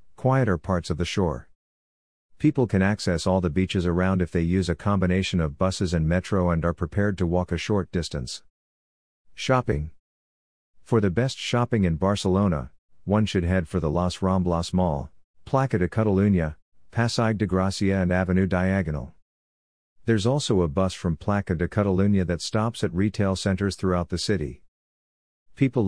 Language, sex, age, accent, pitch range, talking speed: English, male, 50-69, American, 85-100 Hz, 160 wpm